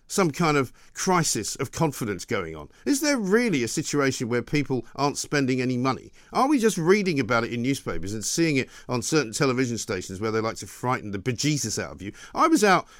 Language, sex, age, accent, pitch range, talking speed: English, male, 50-69, British, 130-195 Hz, 215 wpm